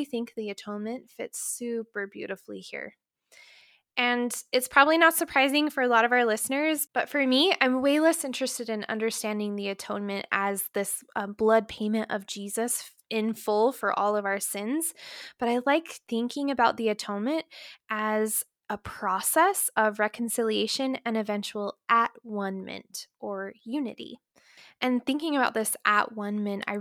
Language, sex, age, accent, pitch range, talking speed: English, female, 10-29, American, 210-260 Hz, 150 wpm